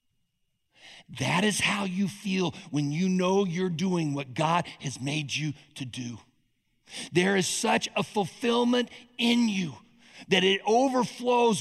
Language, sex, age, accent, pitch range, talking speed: English, male, 50-69, American, 170-245 Hz, 140 wpm